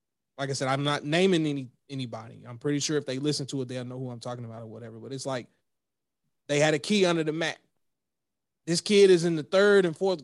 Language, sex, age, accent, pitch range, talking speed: English, male, 30-49, American, 140-185 Hz, 245 wpm